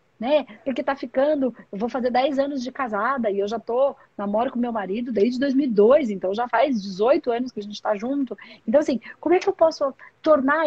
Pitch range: 230-300 Hz